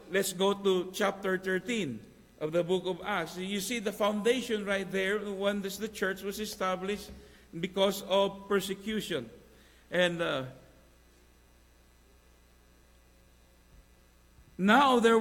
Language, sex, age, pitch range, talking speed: English, male, 50-69, 195-230 Hz, 115 wpm